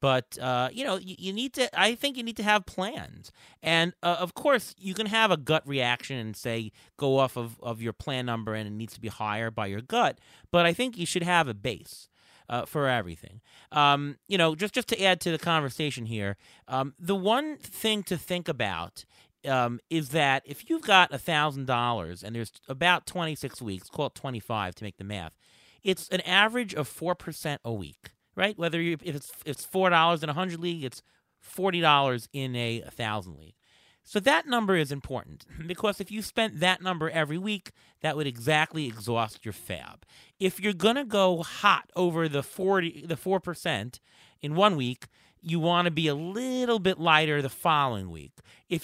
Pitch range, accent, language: 120-185 Hz, American, English